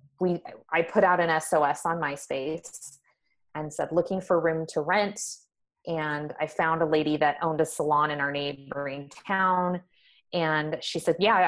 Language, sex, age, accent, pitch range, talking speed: English, female, 20-39, American, 150-180 Hz, 165 wpm